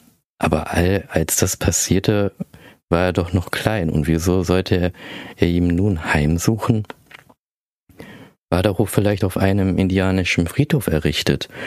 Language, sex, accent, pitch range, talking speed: German, male, German, 80-100 Hz, 140 wpm